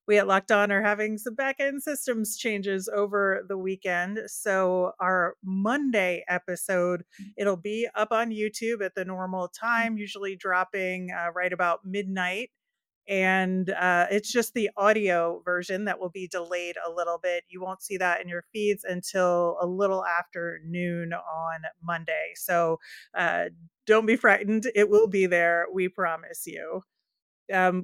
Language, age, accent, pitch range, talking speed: English, 30-49, American, 180-215 Hz, 155 wpm